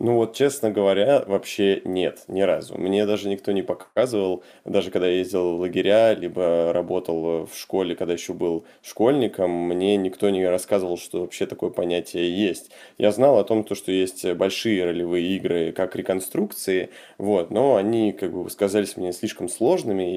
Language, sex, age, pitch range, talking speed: Russian, male, 20-39, 90-105 Hz, 165 wpm